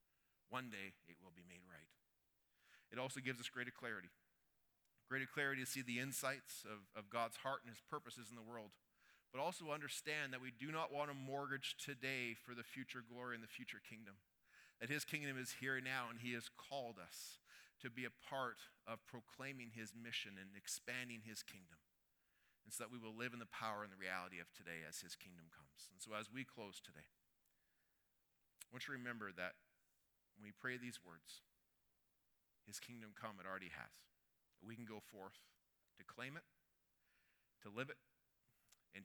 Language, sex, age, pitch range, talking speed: English, male, 40-59, 95-125 Hz, 190 wpm